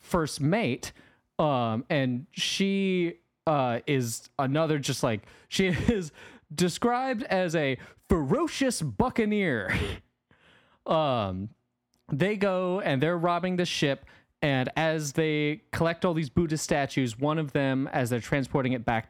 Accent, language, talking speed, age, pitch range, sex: American, English, 130 wpm, 30-49, 120-175 Hz, male